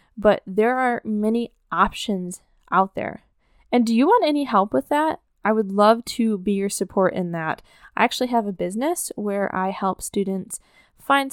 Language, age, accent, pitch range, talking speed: English, 10-29, American, 195-240 Hz, 180 wpm